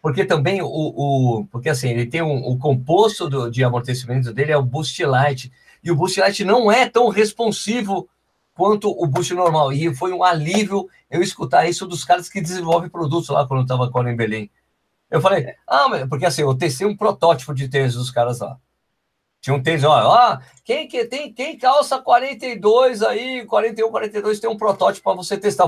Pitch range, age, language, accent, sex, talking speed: 130-200 Hz, 50-69, Portuguese, Brazilian, male, 195 wpm